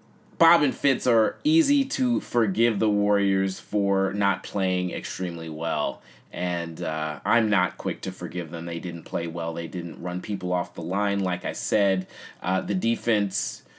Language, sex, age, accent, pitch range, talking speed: English, male, 20-39, American, 90-110 Hz, 170 wpm